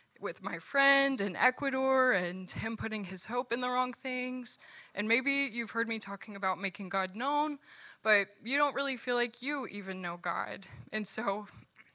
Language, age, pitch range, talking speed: English, 20-39, 195-235 Hz, 180 wpm